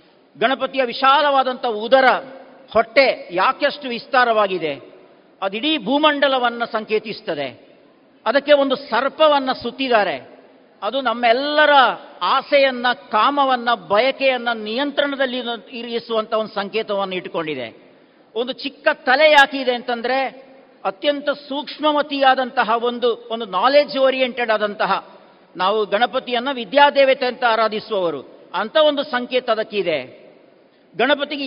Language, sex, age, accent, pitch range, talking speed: Kannada, male, 50-69, native, 225-275 Hz, 85 wpm